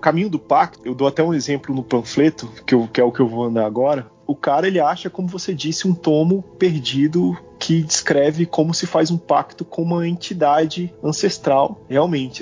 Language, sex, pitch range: Portuguese, male, 125-160 Hz